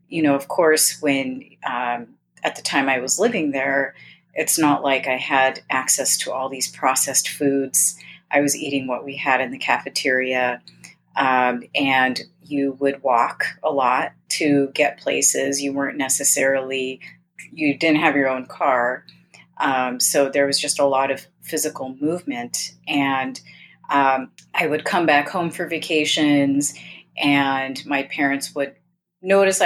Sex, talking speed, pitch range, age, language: female, 155 wpm, 130-150 Hz, 30-49, English